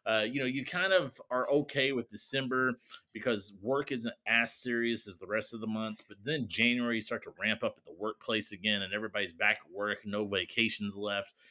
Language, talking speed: English, 215 wpm